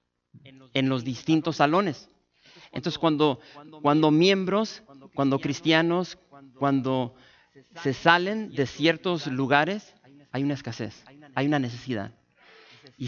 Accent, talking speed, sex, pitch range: Mexican, 105 wpm, male, 125-150 Hz